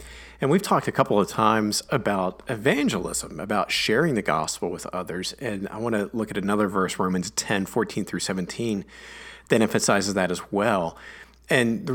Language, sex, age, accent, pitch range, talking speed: English, male, 40-59, American, 100-135 Hz, 175 wpm